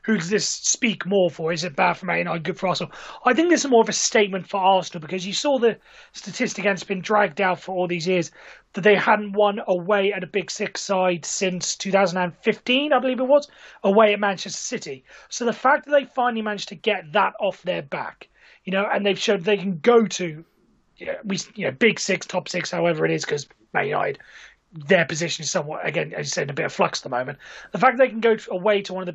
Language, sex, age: English, male, 30-49